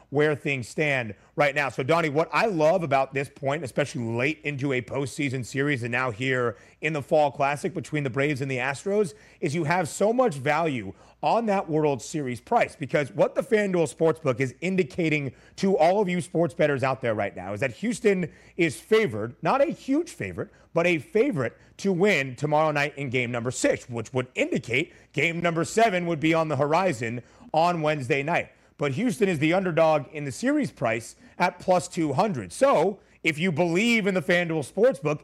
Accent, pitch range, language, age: American, 130-180 Hz, English, 30-49